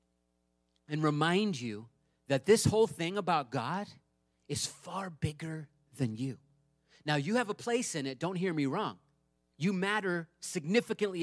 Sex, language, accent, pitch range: male, English, American, 145-220 Hz